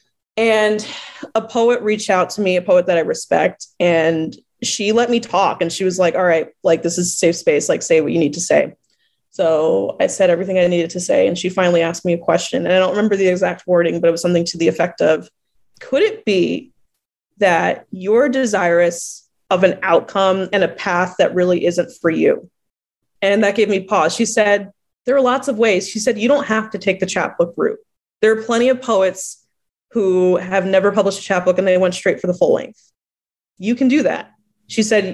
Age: 20-39